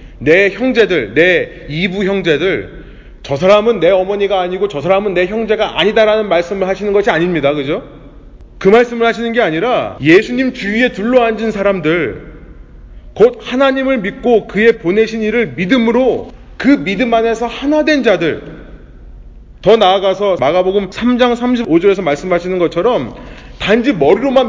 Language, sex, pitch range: Korean, male, 190-255 Hz